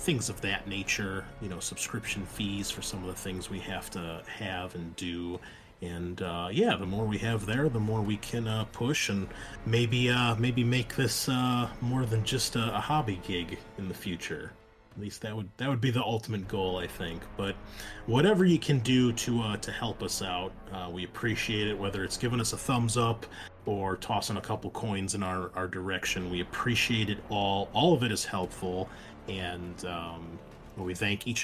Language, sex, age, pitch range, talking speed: English, male, 30-49, 95-115 Hz, 205 wpm